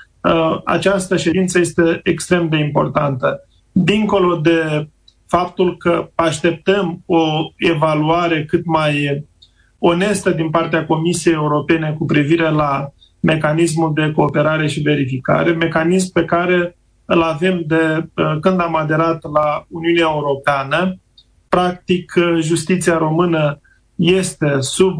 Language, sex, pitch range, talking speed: Romanian, male, 155-180 Hz, 110 wpm